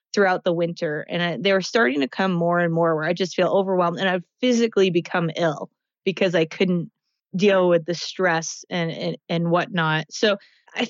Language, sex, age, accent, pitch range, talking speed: English, female, 20-39, American, 175-225 Hz, 195 wpm